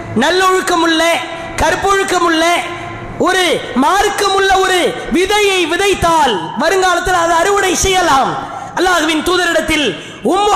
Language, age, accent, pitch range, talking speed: English, 20-39, Indian, 315-370 Hz, 100 wpm